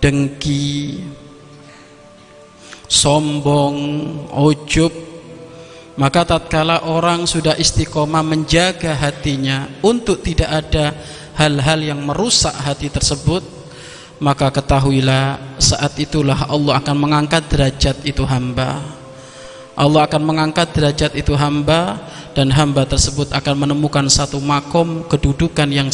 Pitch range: 140-160 Hz